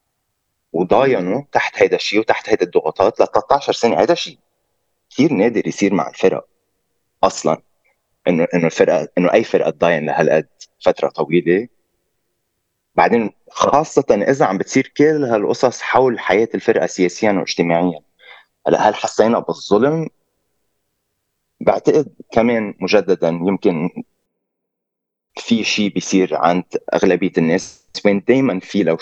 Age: 20-39